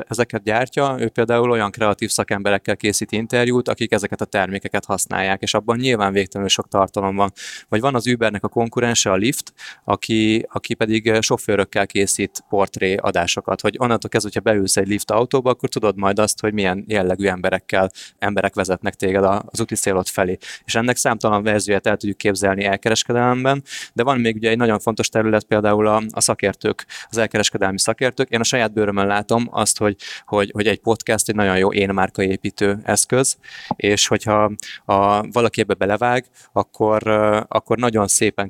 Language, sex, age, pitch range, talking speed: Hungarian, male, 20-39, 100-115 Hz, 170 wpm